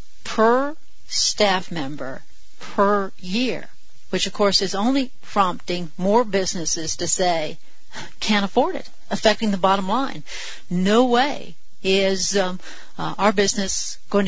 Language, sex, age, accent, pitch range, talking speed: English, female, 50-69, American, 180-210 Hz, 125 wpm